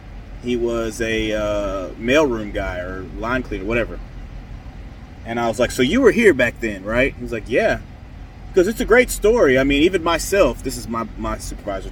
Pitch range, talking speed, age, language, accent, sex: 105-175 Hz, 195 wpm, 30-49, English, American, male